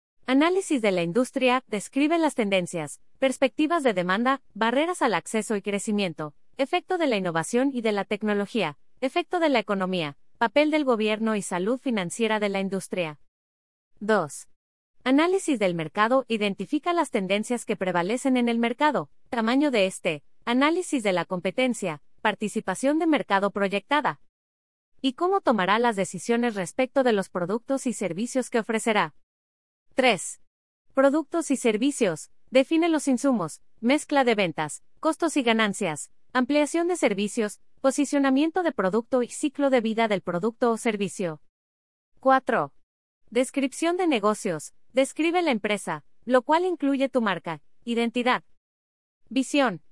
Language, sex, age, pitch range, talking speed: English, female, 30-49, 195-275 Hz, 135 wpm